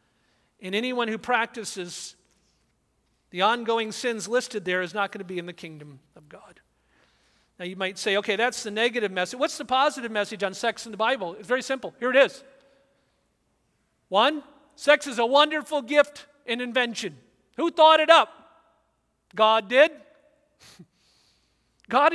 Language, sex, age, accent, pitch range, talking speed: English, male, 50-69, American, 190-275 Hz, 155 wpm